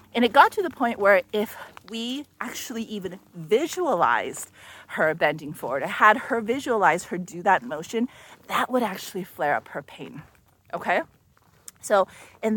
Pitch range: 180-240 Hz